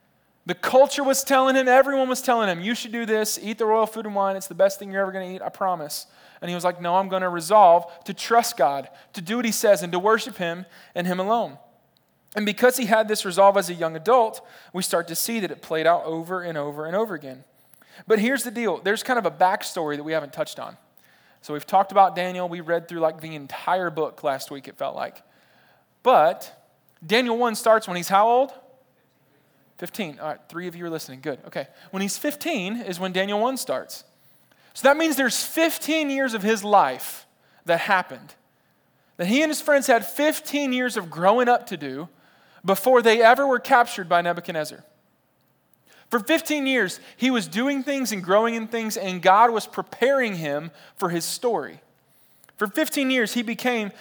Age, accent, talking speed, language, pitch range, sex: 20-39, American, 210 wpm, English, 175-240 Hz, male